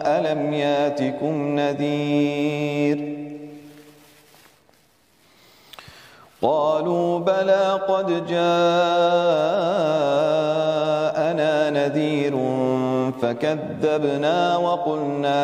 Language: French